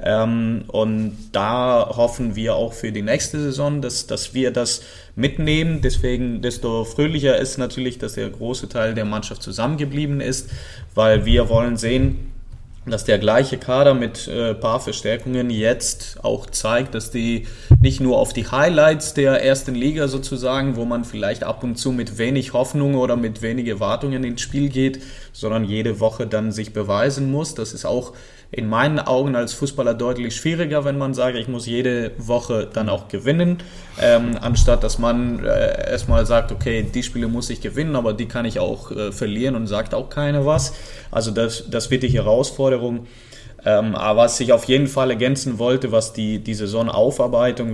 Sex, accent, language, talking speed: male, German, German, 175 wpm